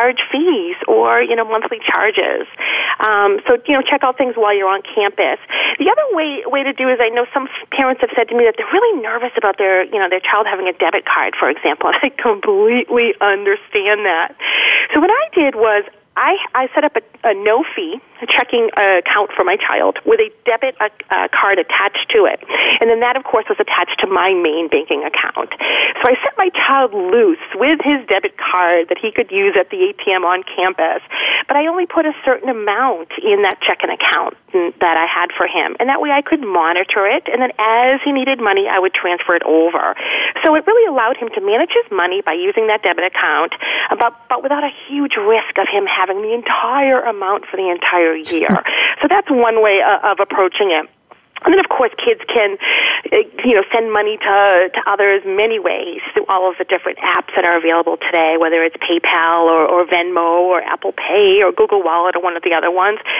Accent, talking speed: American, 215 wpm